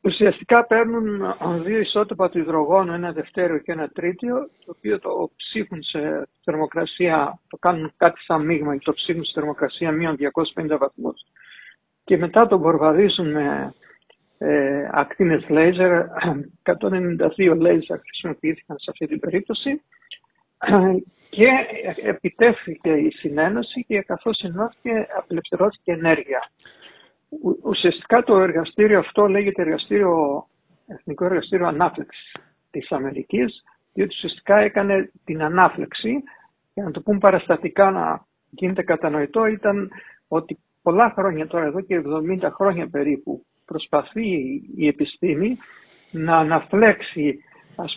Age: 60-79